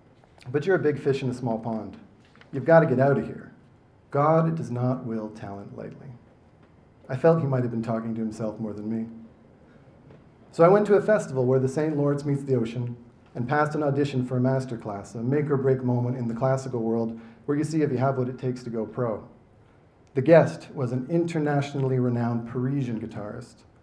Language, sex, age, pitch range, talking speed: English, male, 40-59, 115-135 Hz, 205 wpm